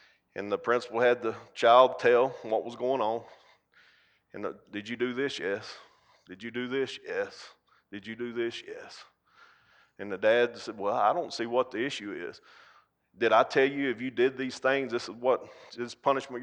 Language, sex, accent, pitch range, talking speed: English, male, American, 120-145 Hz, 195 wpm